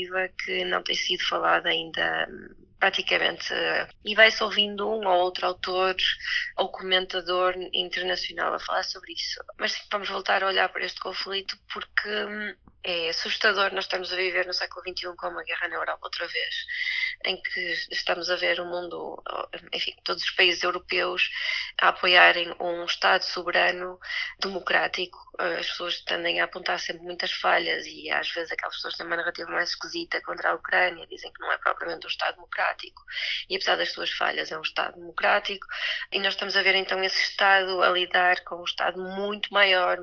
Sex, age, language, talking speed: female, 20-39, Portuguese, 180 wpm